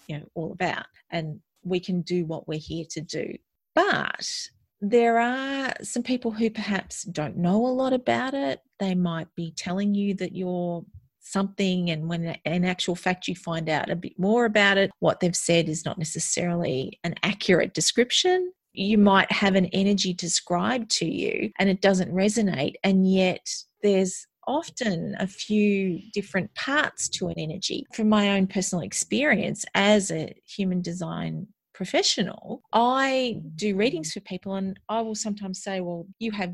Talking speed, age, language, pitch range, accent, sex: 165 wpm, 40-59, English, 175-220 Hz, Australian, female